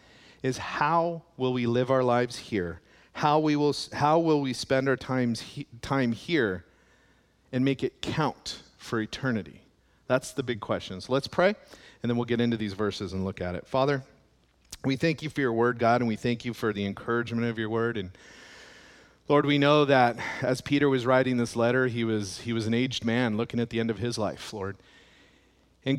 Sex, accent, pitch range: male, American, 115-140 Hz